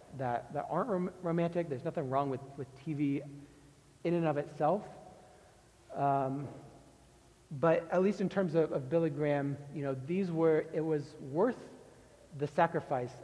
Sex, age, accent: male, 40-59, American